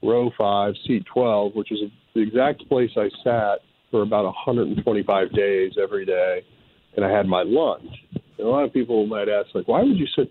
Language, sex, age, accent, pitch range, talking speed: English, male, 50-69, American, 105-130 Hz, 200 wpm